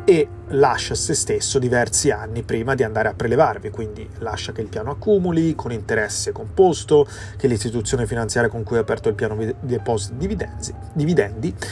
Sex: male